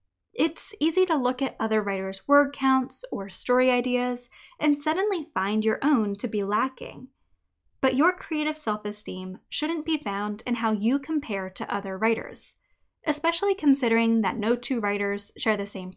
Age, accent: 10-29, American